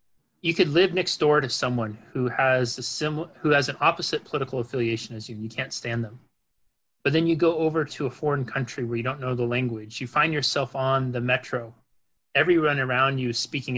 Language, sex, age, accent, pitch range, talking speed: English, male, 30-49, American, 120-150 Hz, 220 wpm